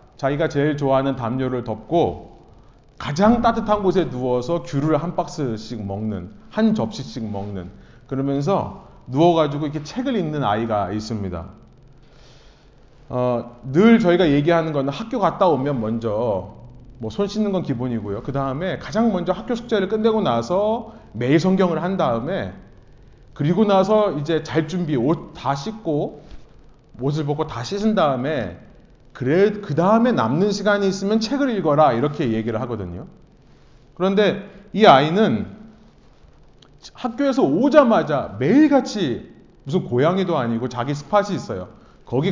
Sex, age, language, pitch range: male, 30-49, Korean, 125-200 Hz